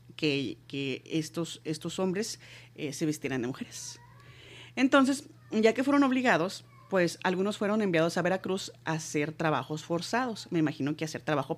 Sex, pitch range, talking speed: female, 150-195 Hz, 155 wpm